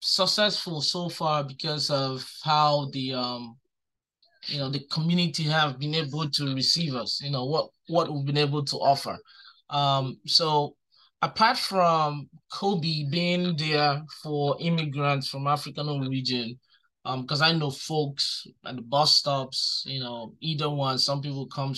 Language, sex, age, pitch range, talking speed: English, male, 20-39, 135-160 Hz, 150 wpm